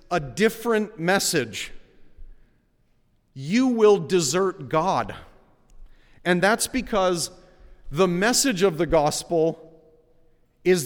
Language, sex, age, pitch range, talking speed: English, male, 40-59, 115-165 Hz, 90 wpm